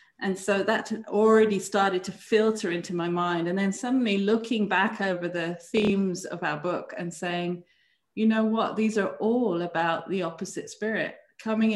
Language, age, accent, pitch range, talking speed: English, 30-49, British, 180-220 Hz, 175 wpm